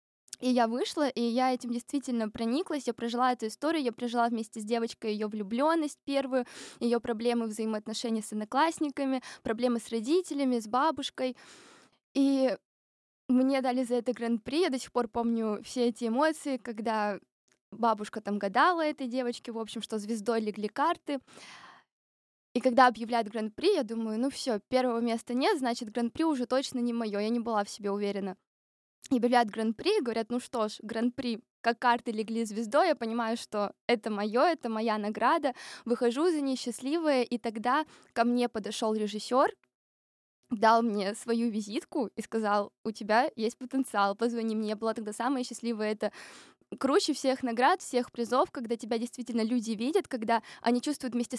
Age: 20-39